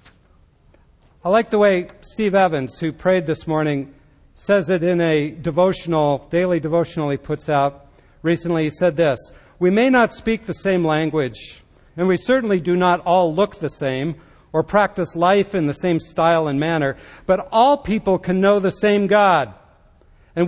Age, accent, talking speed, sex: 50-69, American, 170 wpm, male